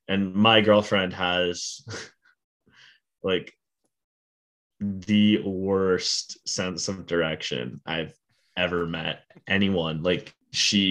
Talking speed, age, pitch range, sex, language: 90 wpm, 10-29, 90-110 Hz, male, English